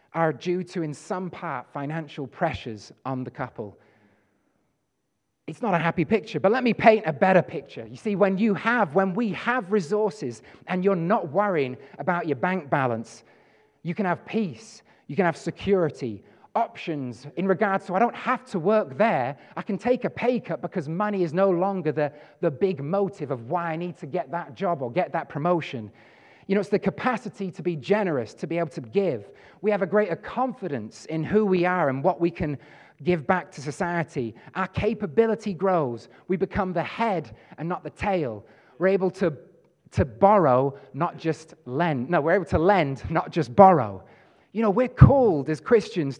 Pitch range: 145-195 Hz